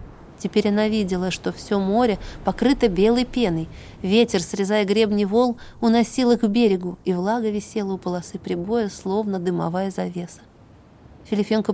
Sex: female